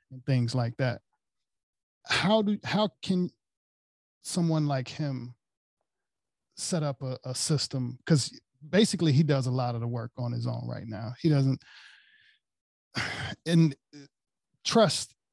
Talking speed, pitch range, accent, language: 135 wpm, 125-145 Hz, American, English